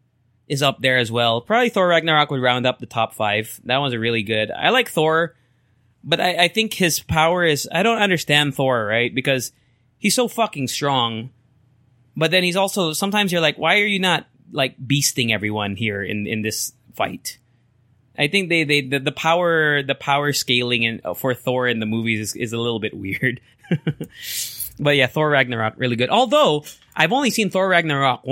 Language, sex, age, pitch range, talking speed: English, male, 20-39, 125-170 Hz, 195 wpm